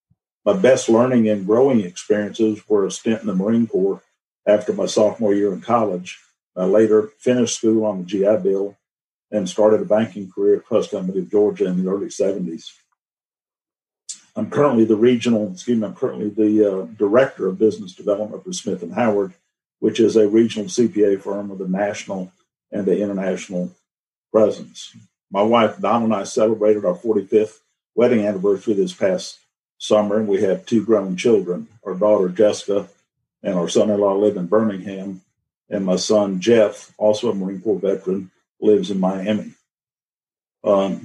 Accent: American